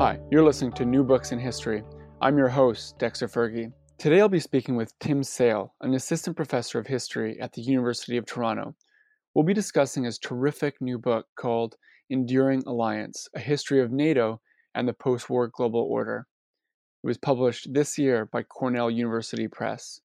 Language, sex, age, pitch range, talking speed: English, male, 20-39, 120-150 Hz, 175 wpm